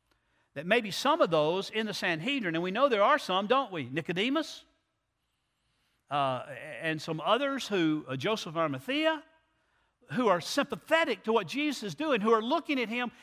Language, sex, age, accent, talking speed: English, male, 50-69, American, 175 wpm